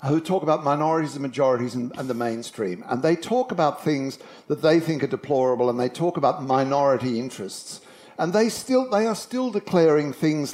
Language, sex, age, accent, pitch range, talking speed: English, male, 60-79, British, 135-195 Hz, 190 wpm